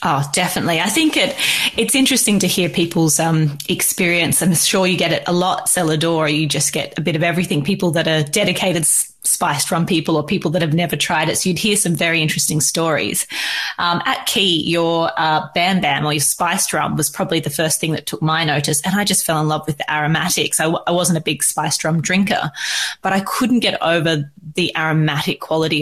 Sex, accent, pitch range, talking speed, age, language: female, Australian, 155-185 Hz, 220 wpm, 20-39, English